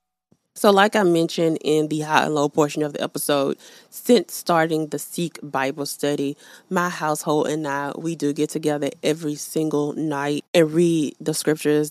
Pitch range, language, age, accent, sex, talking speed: 150-175 Hz, English, 20-39, American, female, 170 wpm